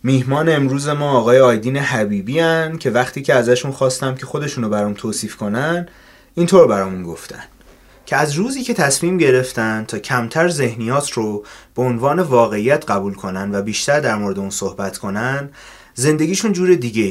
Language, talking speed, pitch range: Persian, 155 wpm, 115-150 Hz